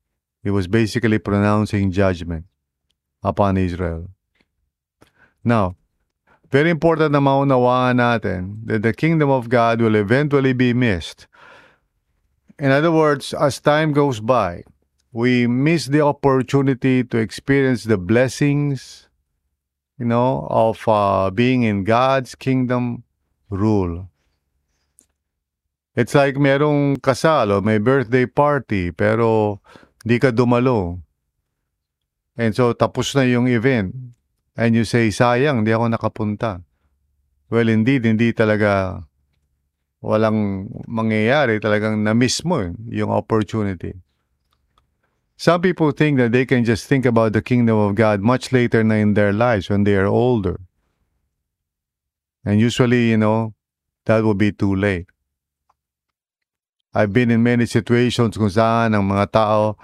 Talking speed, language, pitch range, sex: 125 wpm, English, 95-125 Hz, male